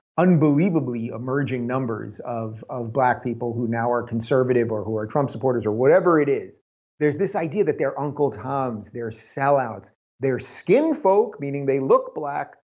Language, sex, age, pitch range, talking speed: English, male, 30-49, 120-175 Hz, 170 wpm